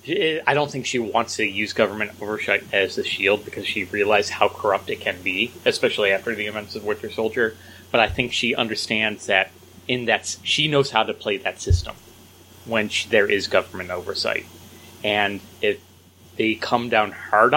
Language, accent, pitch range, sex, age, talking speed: English, American, 95-125 Hz, male, 30-49, 180 wpm